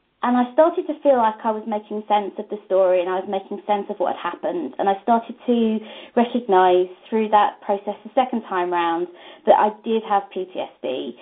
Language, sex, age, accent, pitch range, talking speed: English, female, 20-39, British, 180-230 Hz, 210 wpm